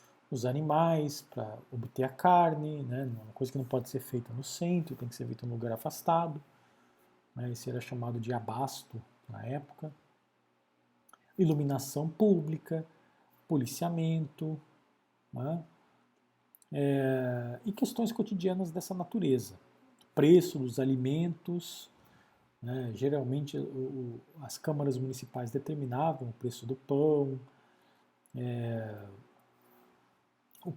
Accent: Brazilian